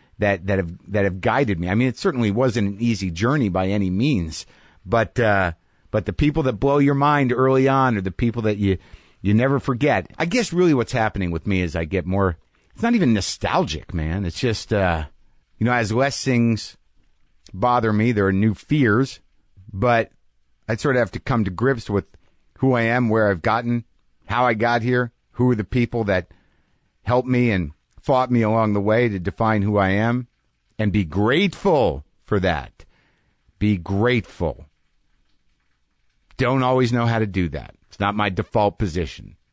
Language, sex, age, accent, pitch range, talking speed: English, male, 50-69, American, 95-120 Hz, 190 wpm